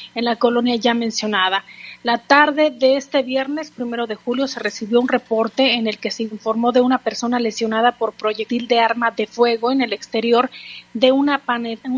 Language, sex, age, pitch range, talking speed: Spanish, female, 30-49, 225-265 Hz, 190 wpm